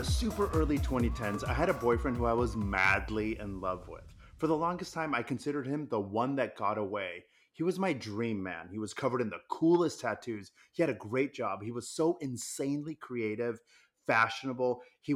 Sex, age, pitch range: male, 30-49, 110-155 Hz